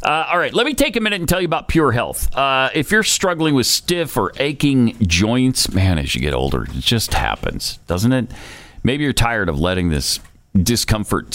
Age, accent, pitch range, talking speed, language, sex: 40-59, American, 95-140 Hz, 210 wpm, English, male